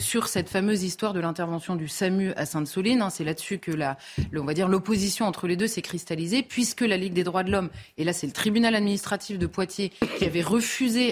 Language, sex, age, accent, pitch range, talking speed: French, female, 30-49, French, 175-220 Hz, 230 wpm